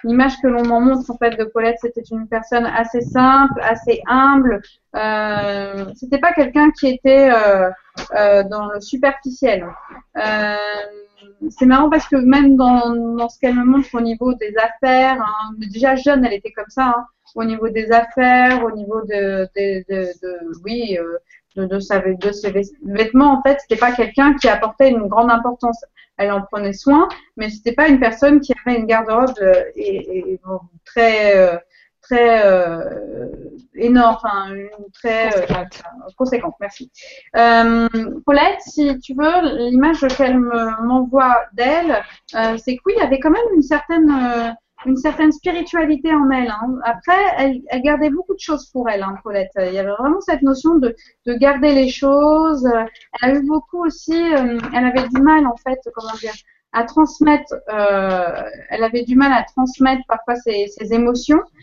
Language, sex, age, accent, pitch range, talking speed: French, female, 30-49, French, 215-275 Hz, 170 wpm